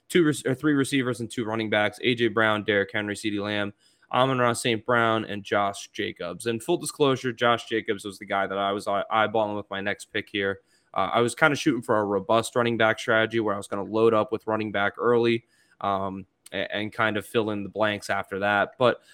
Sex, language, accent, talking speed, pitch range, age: male, English, American, 230 wpm, 105-120 Hz, 20-39